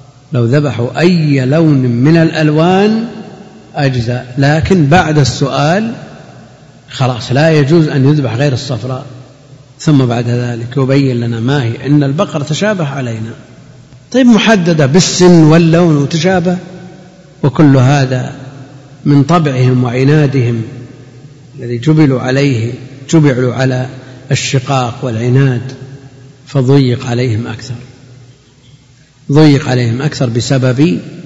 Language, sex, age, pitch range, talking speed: Arabic, male, 50-69, 130-155 Hz, 100 wpm